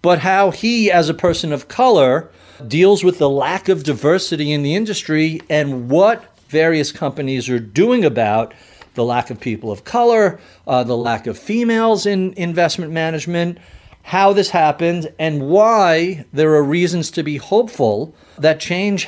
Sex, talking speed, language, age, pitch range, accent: male, 160 wpm, English, 50-69, 125-175 Hz, American